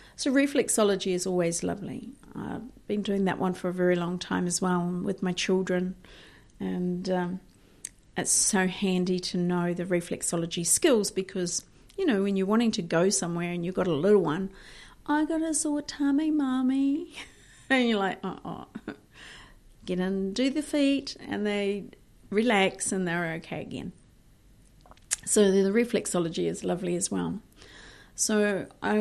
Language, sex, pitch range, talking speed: English, female, 175-205 Hz, 160 wpm